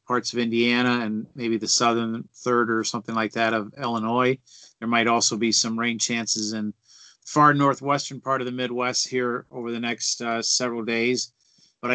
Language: English